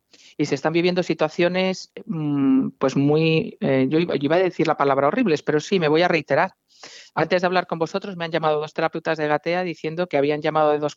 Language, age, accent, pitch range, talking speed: Spanish, 50-69, Spanish, 150-185 Hz, 210 wpm